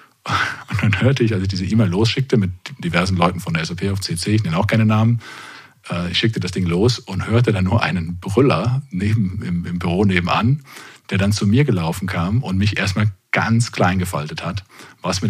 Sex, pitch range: male, 90-110 Hz